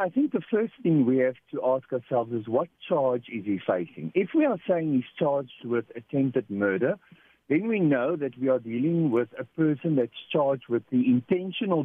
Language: English